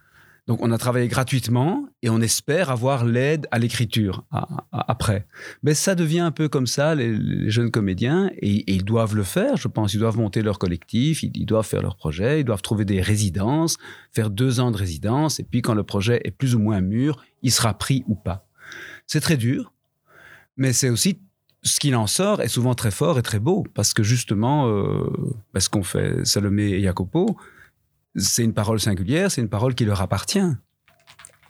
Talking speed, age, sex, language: 210 wpm, 40-59, male, French